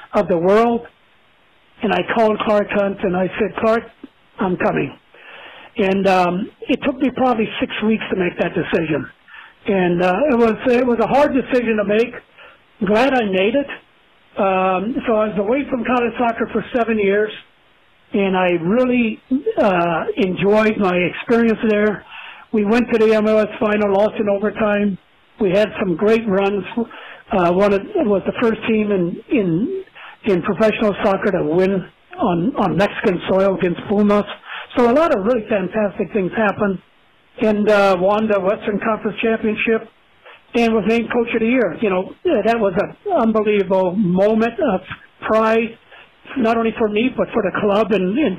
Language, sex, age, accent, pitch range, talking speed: English, male, 60-79, American, 195-230 Hz, 170 wpm